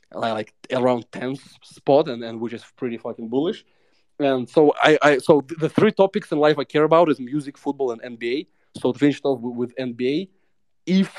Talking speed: 205 wpm